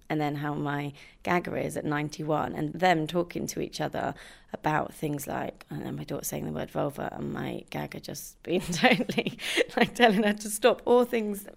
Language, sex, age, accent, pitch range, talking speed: English, female, 20-39, British, 150-180 Hz, 195 wpm